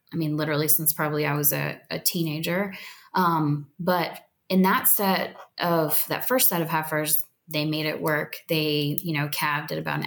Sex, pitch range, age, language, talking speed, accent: female, 150-185 Hz, 20-39, English, 190 wpm, American